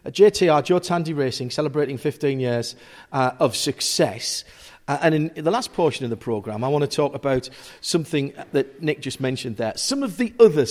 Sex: male